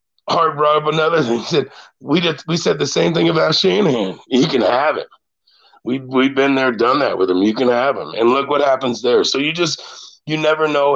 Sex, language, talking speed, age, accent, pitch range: male, English, 235 wpm, 40-59, American, 110-150 Hz